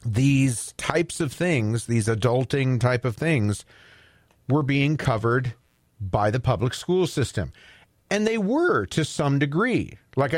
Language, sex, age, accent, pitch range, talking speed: English, male, 40-59, American, 115-155 Hz, 140 wpm